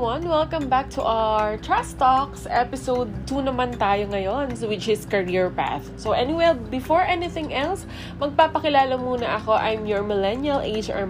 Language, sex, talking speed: Filipino, female, 145 wpm